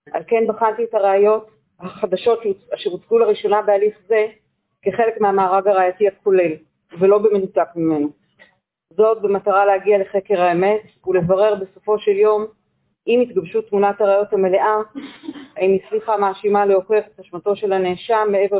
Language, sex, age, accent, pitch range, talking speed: Hebrew, female, 40-59, native, 185-215 Hz, 130 wpm